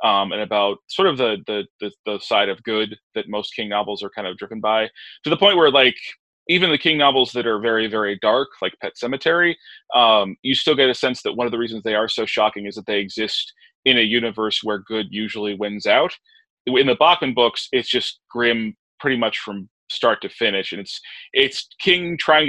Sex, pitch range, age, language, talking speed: male, 105-130 Hz, 20-39, English, 220 wpm